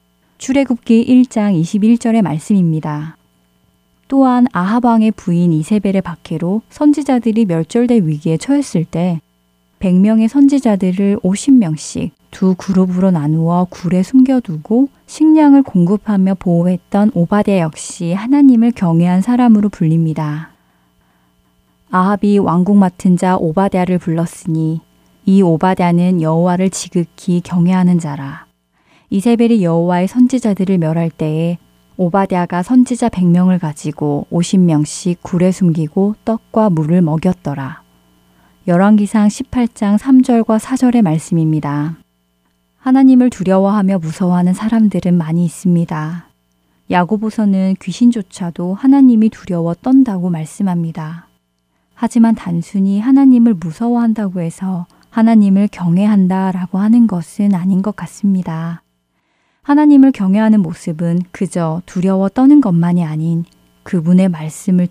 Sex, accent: female, native